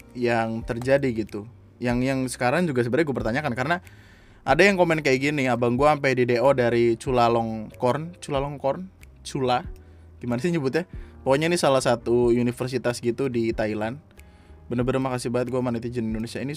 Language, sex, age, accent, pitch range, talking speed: Indonesian, male, 20-39, native, 115-135 Hz, 155 wpm